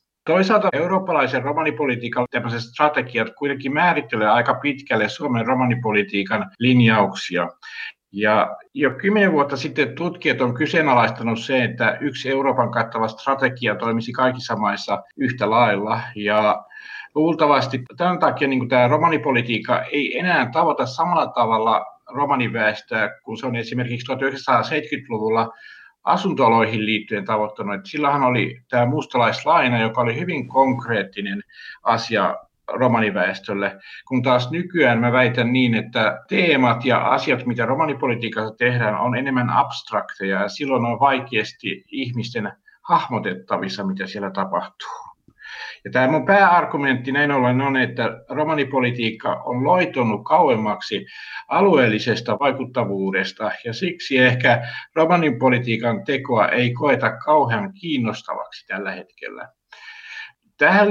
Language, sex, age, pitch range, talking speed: Finnish, male, 60-79, 115-145 Hz, 110 wpm